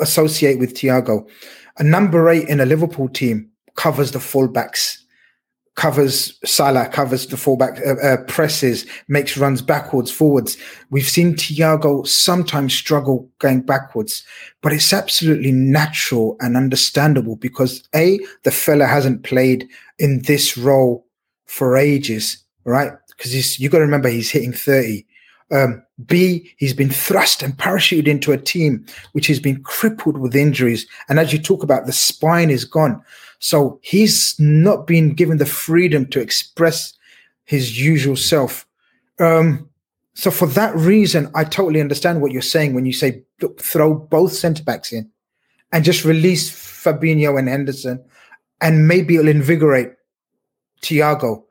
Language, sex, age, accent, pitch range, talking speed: English, male, 30-49, British, 130-160 Hz, 145 wpm